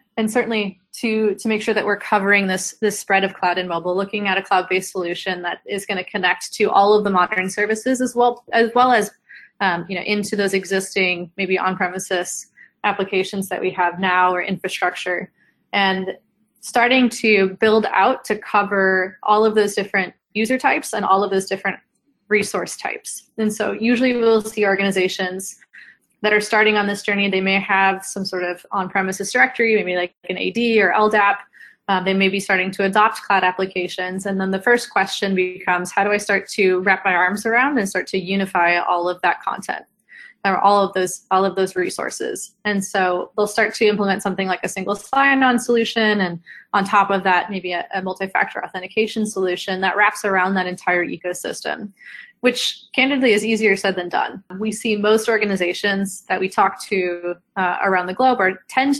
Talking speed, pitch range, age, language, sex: 190 wpm, 185-215 Hz, 20-39, English, female